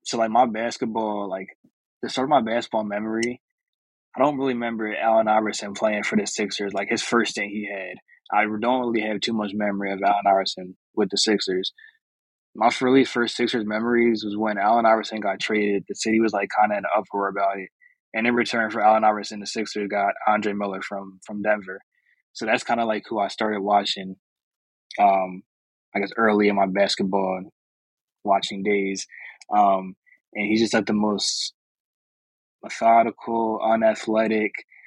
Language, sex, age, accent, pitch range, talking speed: English, male, 20-39, American, 100-115 Hz, 175 wpm